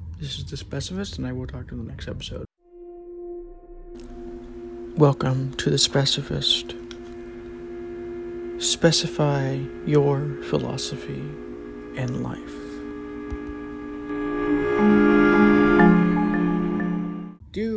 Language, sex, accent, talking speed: English, male, American, 80 wpm